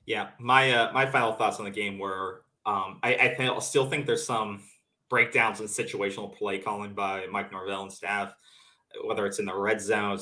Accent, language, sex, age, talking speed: American, English, male, 20-39, 195 wpm